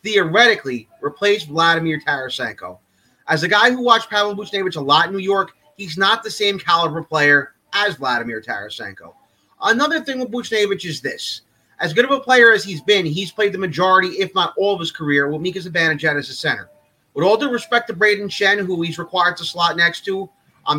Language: English